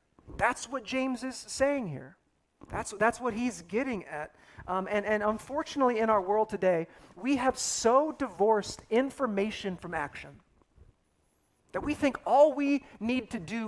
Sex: male